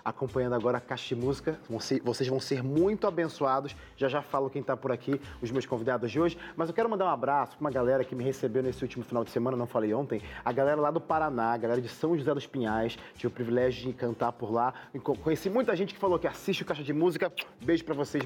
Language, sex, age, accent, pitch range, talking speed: Portuguese, male, 30-49, Brazilian, 130-185 Hz, 250 wpm